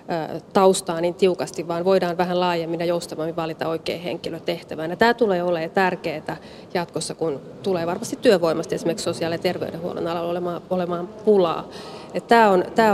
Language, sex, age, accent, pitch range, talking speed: Finnish, female, 30-49, native, 170-205 Hz, 140 wpm